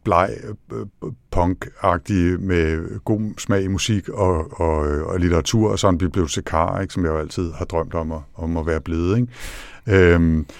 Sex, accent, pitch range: male, native, 85-105 Hz